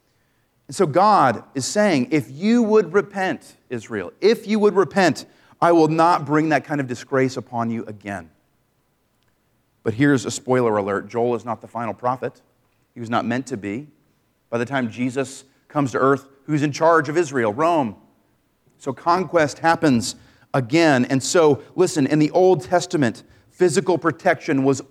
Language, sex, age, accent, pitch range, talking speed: English, male, 40-59, American, 130-200 Hz, 165 wpm